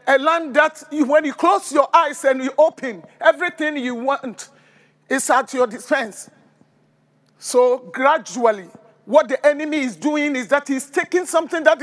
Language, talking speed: English, 160 wpm